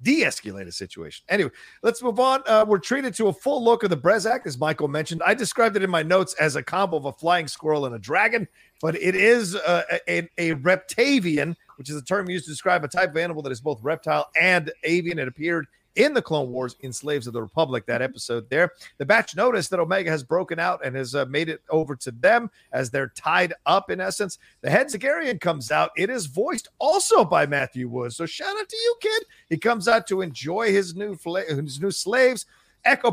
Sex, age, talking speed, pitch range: male, 40-59, 230 wpm, 145-210 Hz